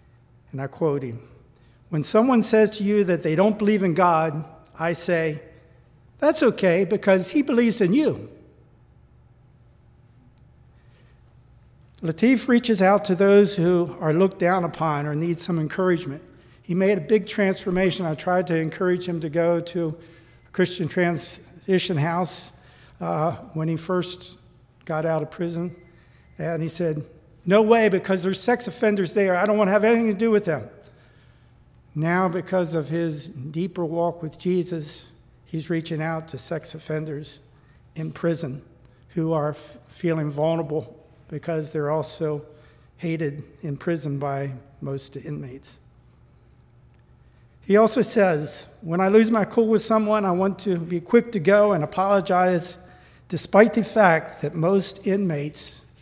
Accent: American